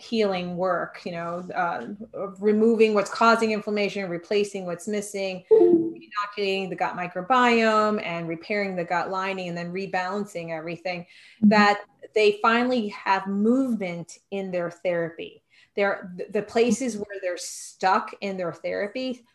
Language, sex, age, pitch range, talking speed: English, female, 30-49, 180-215 Hz, 135 wpm